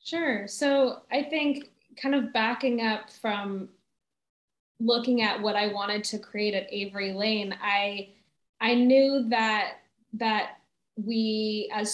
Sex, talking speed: female, 130 wpm